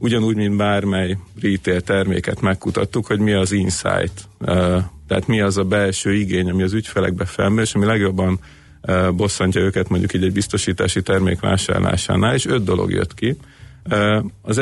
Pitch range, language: 95-110 Hz, Hungarian